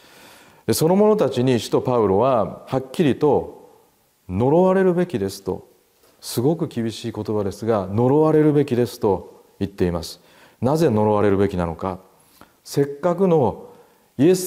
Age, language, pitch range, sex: 40-59, Japanese, 100-155 Hz, male